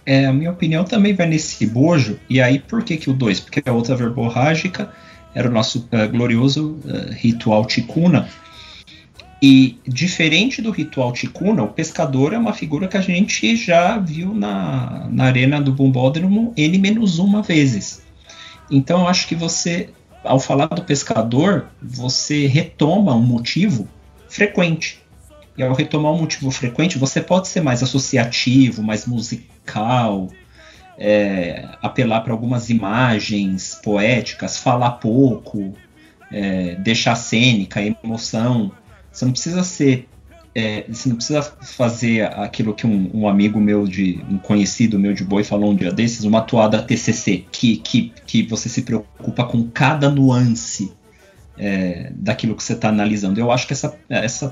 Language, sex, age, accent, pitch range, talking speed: Portuguese, male, 40-59, Brazilian, 110-155 Hz, 145 wpm